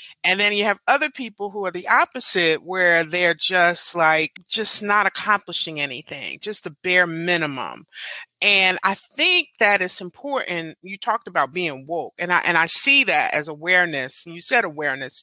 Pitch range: 160-205 Hz